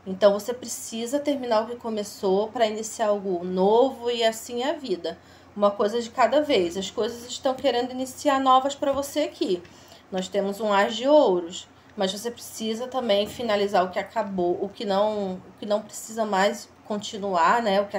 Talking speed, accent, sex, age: 185 wpm, Brazilian, female, 20-39